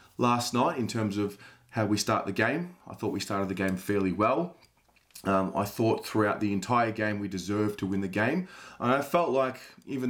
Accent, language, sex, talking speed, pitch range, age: Australian, English, male, 215 wpm, 105-120 Hz, 20-39